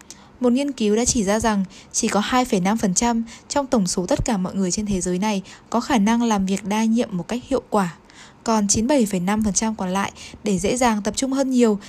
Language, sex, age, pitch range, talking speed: Vietnamese, female, 10-29, 200-255 Hz, 215 wpm